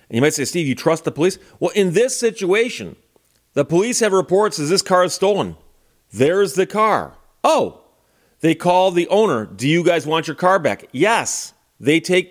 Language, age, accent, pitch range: English, 40-59, American, 130-175 Hz